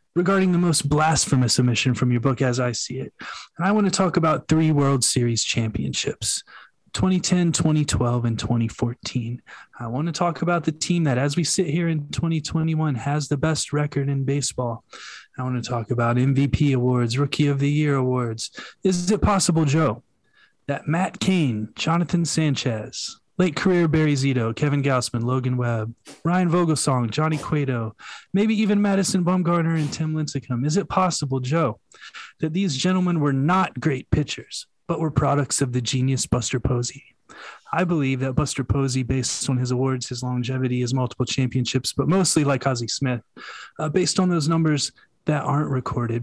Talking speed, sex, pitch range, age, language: 170 wpm, male, 125-160 Hz, 20-39, English